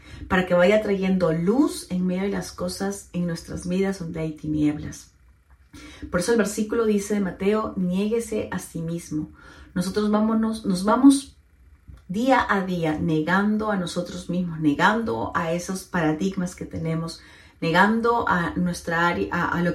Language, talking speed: Spanish, 150 wpm